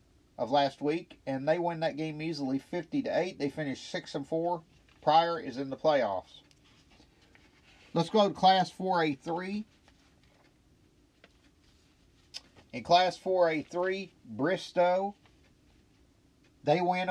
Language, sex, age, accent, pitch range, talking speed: English, male, 50-69, American, 140-175 Hz, 115 wpm